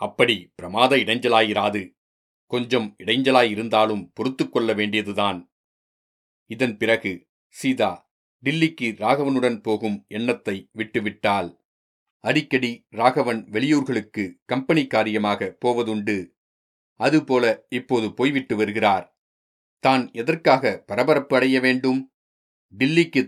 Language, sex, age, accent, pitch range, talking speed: Tamil, male, 40-59, native, 105-130 Hz, 80 wpm